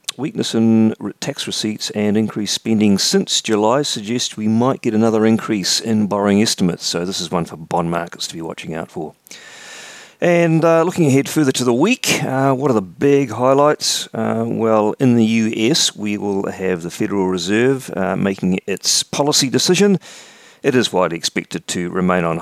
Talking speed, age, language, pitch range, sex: 180 wpm, 40-59, English, 85-120 Hz, male